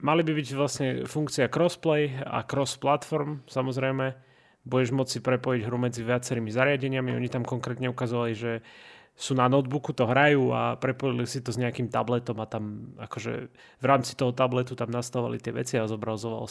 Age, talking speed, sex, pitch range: 30-49, 175 wpm, male, 115-130 Hz